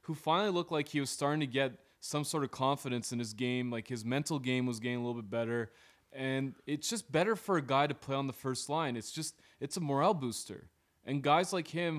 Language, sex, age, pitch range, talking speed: English, male, 20-39, 125-160 Hz, 245 wpm